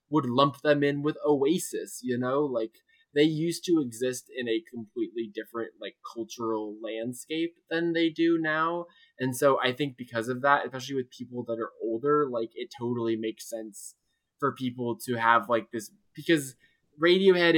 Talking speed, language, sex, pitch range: 170 wpm, English, male, 115-140 Hz